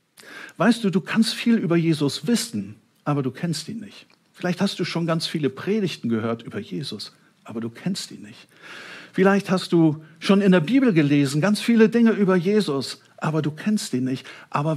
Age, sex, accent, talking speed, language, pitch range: 60-79, male, German, 190 wpm, German, 145-200 Hz